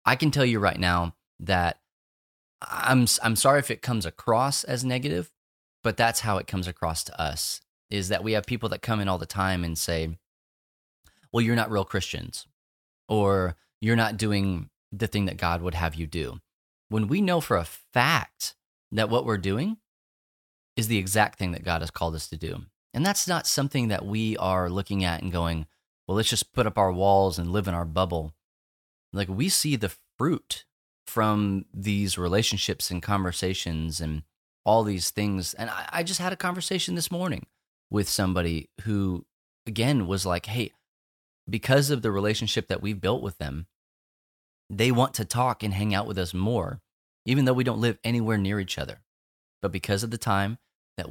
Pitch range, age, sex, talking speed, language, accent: 85-115 Hz, 30-49, male, 190 wpm, English, American